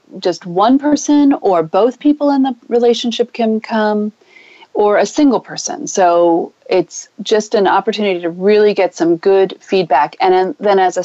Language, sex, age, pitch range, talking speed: English, female, 40-59, 170-235 Hz, 165 wpm